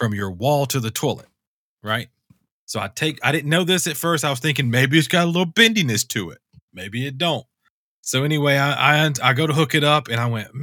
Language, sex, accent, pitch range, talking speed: English, male, American, 110-135 Hz, 245 wpm